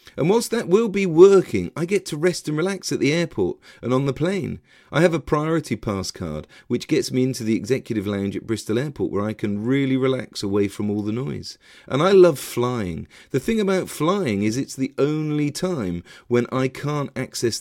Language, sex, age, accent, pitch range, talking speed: English, male, 40-59, British, 110-155 Hz, 210 wpm